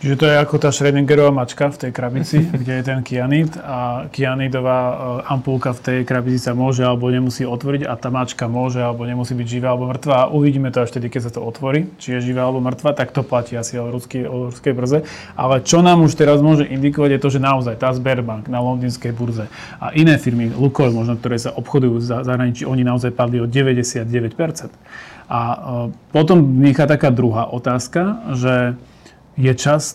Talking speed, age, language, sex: 190 wpm, 30-49, Slovak, male